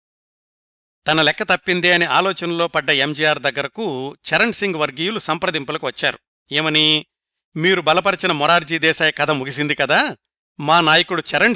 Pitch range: 145-185 Hz